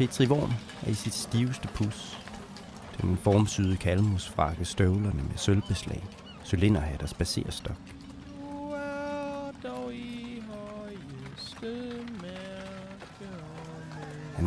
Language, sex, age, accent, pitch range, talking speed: Danish, male, 30-49, native, 95-125 Hz, 65 wpm